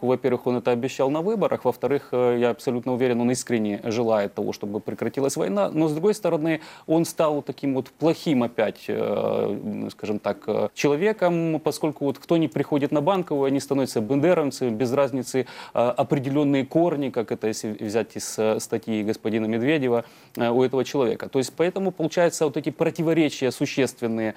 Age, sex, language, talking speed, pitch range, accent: 30-49, male, Russian, 155 wpm, 120-155 Hz, native